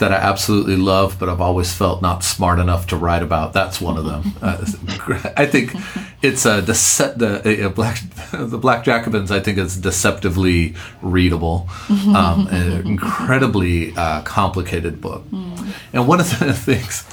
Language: English